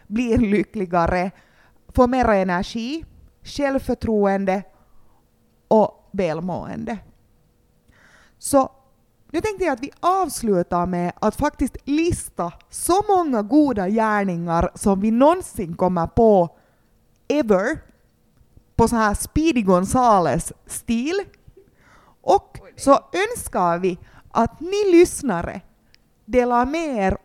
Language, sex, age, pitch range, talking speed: Swedish, female, 30-49, 195-285 Hz, 95 wpm